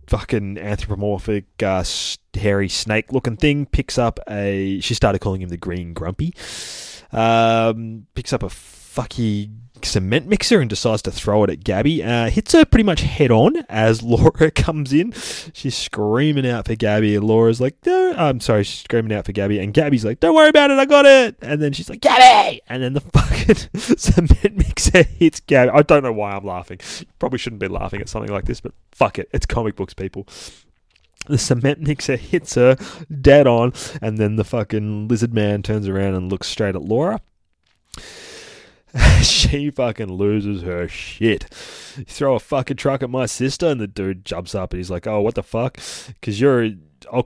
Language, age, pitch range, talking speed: English, 20-39, 100-135 Hz, 190 wpm